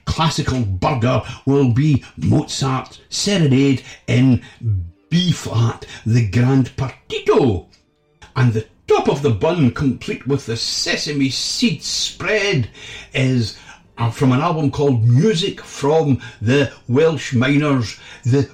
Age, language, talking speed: 60-79, English, 115 wpm